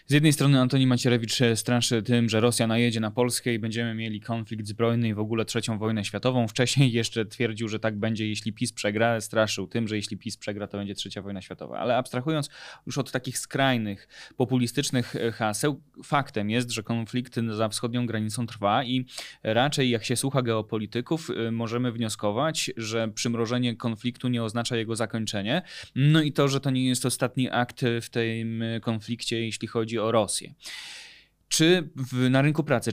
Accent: native